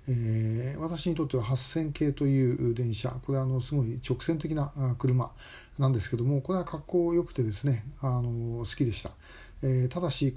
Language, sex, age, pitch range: Japanese, male, 40-59, 115-140 Hz